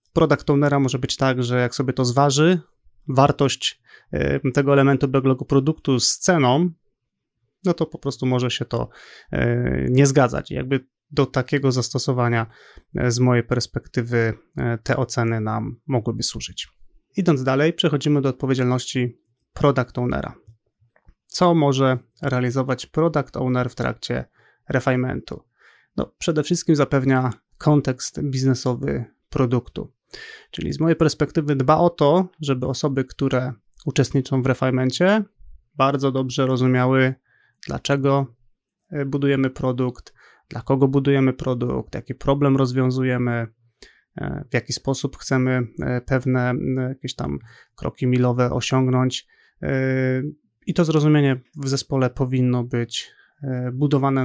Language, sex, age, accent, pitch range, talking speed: Polish, male, 30-49, native, 125-140 Hz, 115 wpm